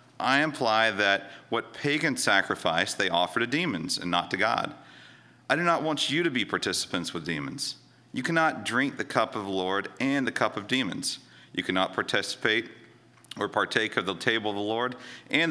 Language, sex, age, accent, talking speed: English, male, 40-59, American, 190 wpm